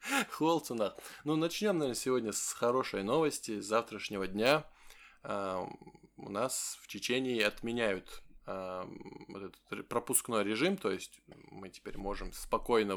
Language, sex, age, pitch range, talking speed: Russian, male, 20-39, 100-125 Hz, 130 wpm